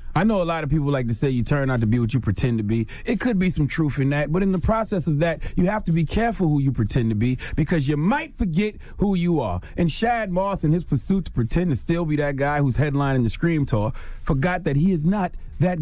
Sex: male